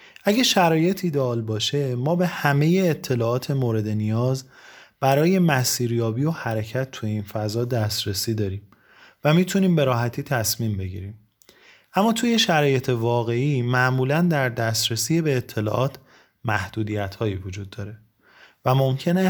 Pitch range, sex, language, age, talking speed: 110-155 Hz, male, Persian, 30-49, 125 wpm